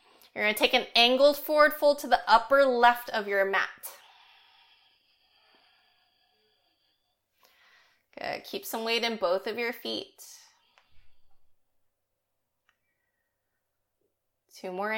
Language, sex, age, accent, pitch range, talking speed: English, female, 30-49, American, 200-285 Hz, 105 wpm